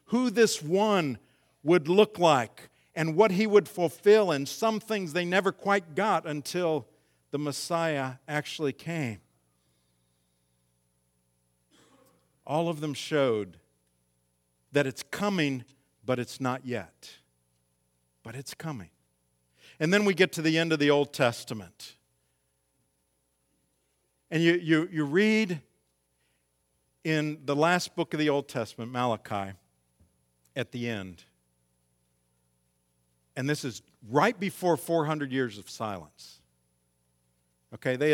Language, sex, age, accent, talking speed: English, male, 50-69, American, 120 wpm